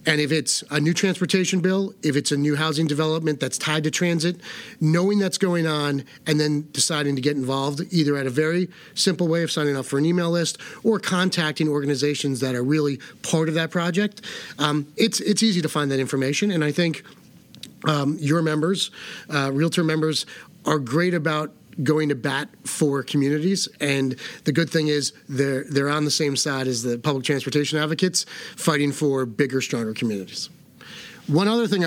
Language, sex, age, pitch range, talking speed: English, male, 40-59, 135-170 Hz, 185 wpm